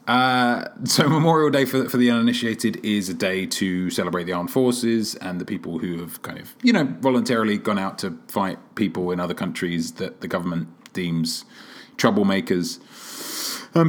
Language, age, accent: English, 30-49, British